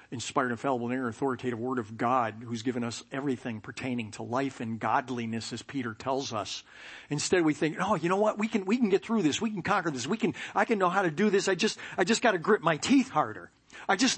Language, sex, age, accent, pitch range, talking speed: English, male, 50-69, American, 125-170 Hz, 245 wpm